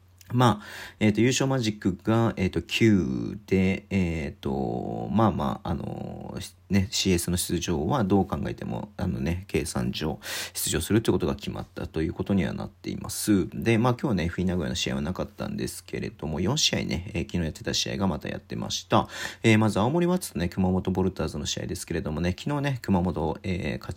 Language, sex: Japanese, male